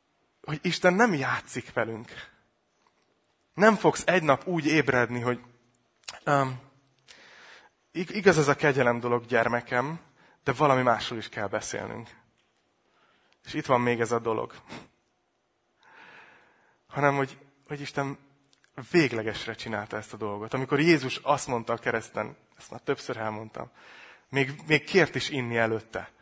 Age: 30-49